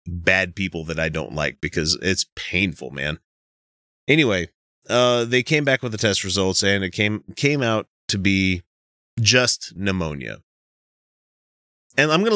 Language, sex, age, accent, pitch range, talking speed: English, male, 30-49, American, 90-125 Hz, 150 wpm